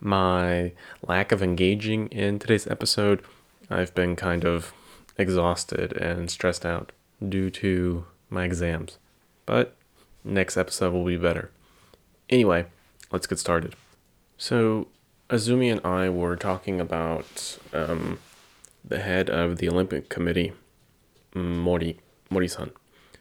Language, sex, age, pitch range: Japanese, male, 20-39, 85-95 Hz